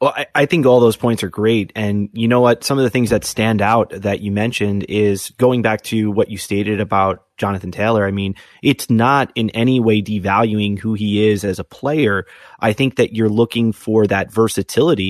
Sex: male